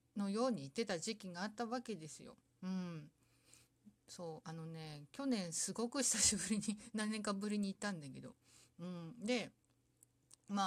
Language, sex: Japanese, female